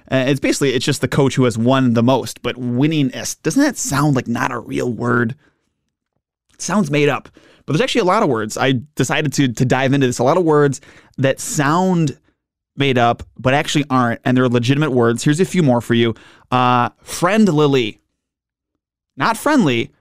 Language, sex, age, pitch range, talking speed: English, male, 20-39, 125-150 Hz, 195 wpm